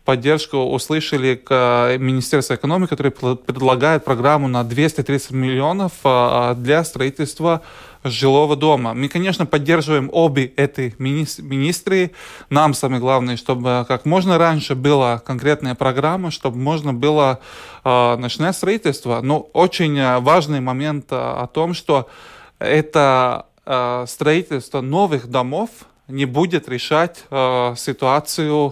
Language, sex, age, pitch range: Russian, male, 20-39, 130-155 Hz